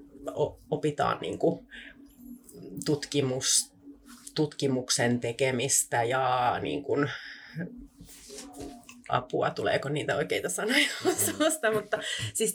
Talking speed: 85 wpm